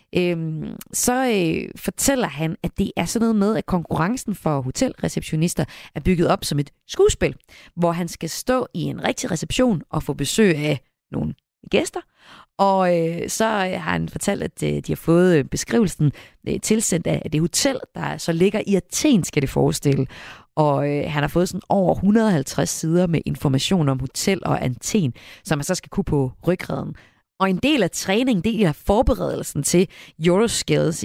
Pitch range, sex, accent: 145-200 Hz, female, native